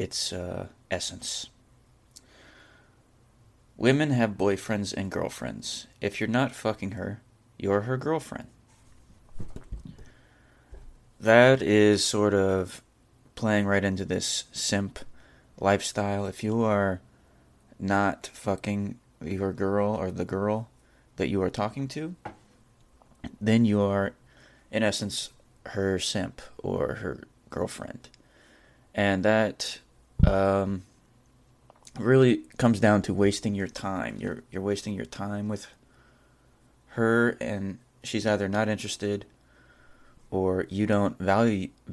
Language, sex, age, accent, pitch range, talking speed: English, male, 20-39, American, 95-115 Hz, 110 wpm